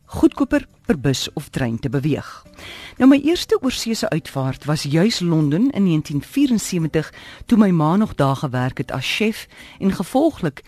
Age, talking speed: 50-69, 150 wpm